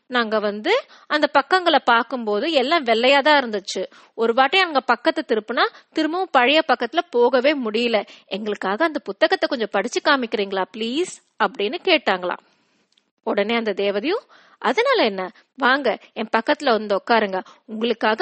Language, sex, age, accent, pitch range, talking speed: Tamil, female, 20-39, native, 225-335 Hz, 125 wpm